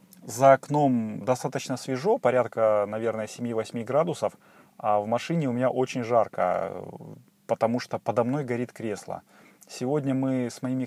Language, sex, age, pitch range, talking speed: Russian, male, 30-49, 105-130 Hz, 140 wpm